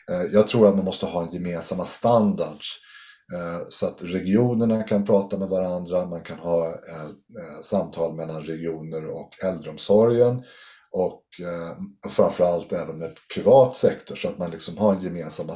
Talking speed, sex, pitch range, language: 145 wpm, male, 85-105 Hz, Swedish